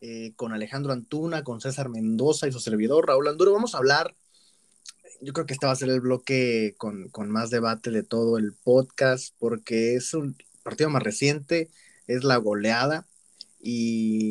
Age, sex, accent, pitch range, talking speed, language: 30-49, male, Mexican, 115-140 Hz, 175 wpm, Spanish